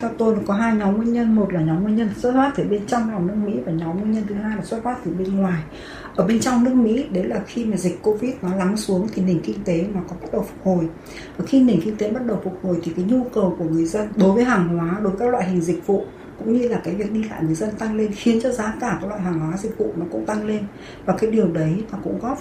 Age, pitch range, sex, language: 60-79, 180-230 Hz, female, Vietnamese